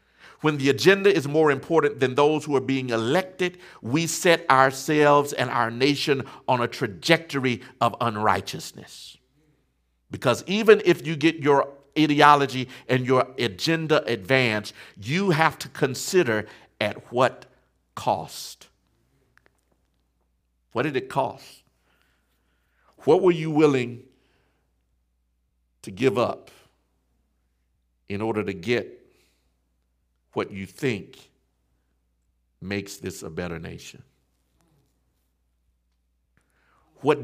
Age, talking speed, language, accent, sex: 50-69, 105 wpm, English, American, male